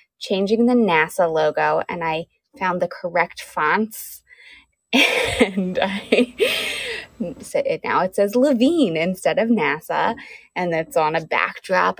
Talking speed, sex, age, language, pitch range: 120 wpm, female, 20-39, English, 170-230 Hz